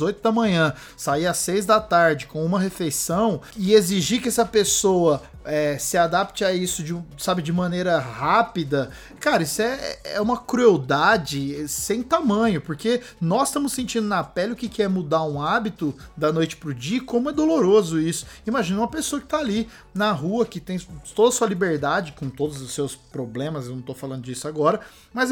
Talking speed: 190 wpm